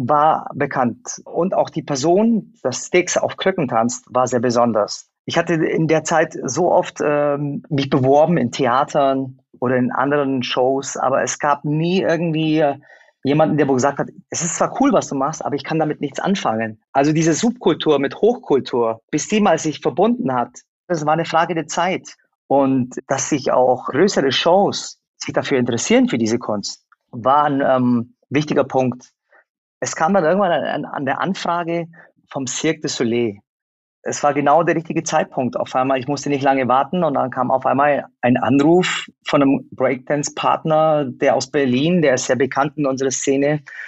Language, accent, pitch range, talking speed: German, German, 130-160 Hz, 180 wpm